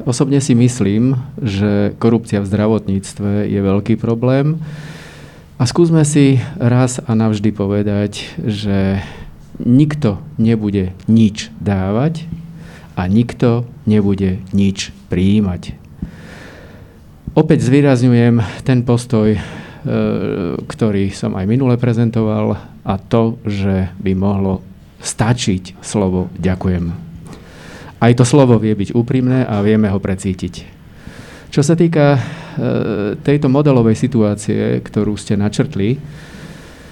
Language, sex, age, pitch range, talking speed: Slovak, male, 50-69, 100-125 Hz, 105 wpm